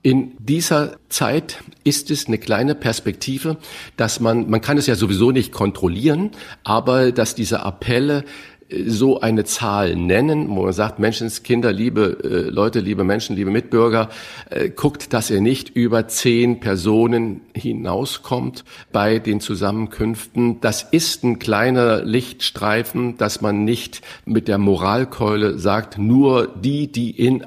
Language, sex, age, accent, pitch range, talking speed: German, male, 50-69, German, 95-125 Hz, 140 wpm